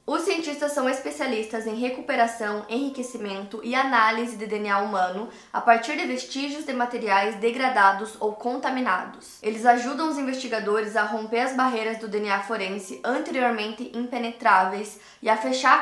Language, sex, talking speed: Portuguese, female, 140 wpm